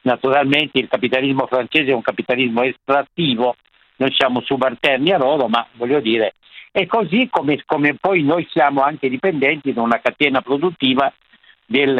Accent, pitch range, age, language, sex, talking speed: native, 125-155 Hz, 60-79, Italian, male, 150 wpm